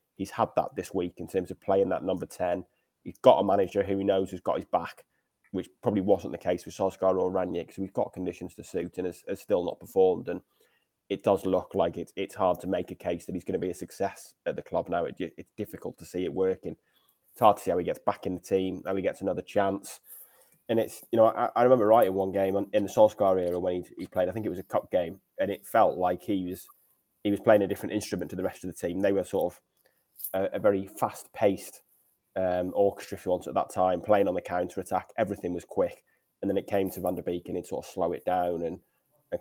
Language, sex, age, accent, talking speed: English, male, 20-39, British, 260 wpm